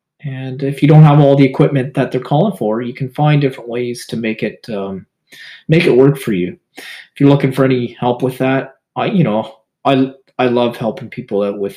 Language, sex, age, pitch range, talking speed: English, male, 30-49, 115-145 Hz, 225 wpm